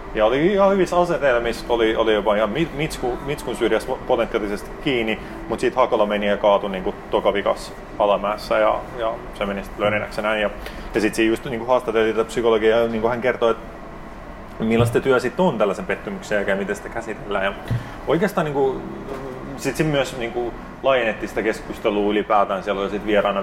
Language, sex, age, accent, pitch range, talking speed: Finnish, male, 30-49, native, 105-140 Hz, 175 wpm